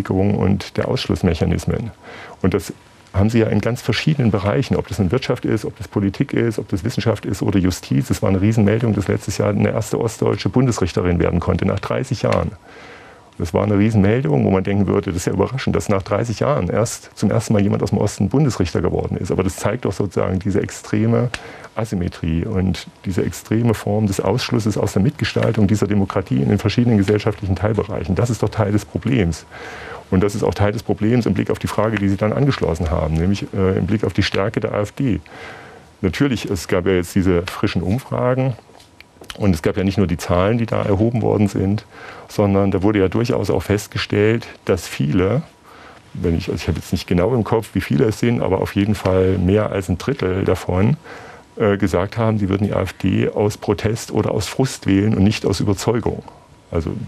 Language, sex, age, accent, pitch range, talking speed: German, male, 40-59, German, 95-110 Hz, 205 wpm